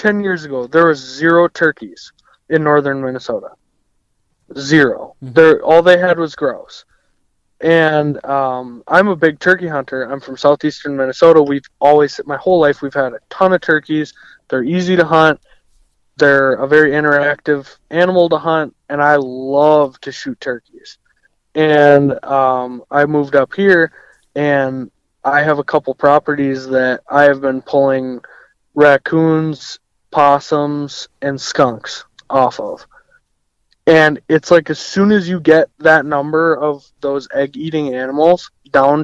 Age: 20-39